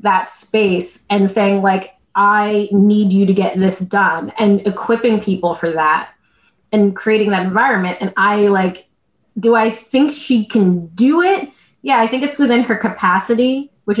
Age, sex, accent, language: 20-39, female, American, English